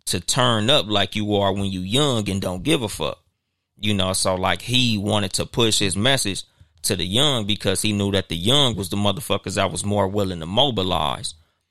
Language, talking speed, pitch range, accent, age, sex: English, 215 wpm, 95-120 Hz, American, 30-49, male